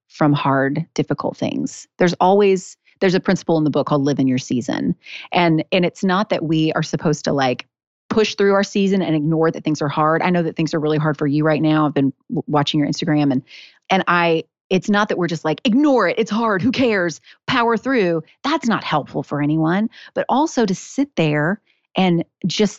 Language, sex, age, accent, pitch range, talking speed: English, female, 30-49, American, 155-210 Hz, 215 wpm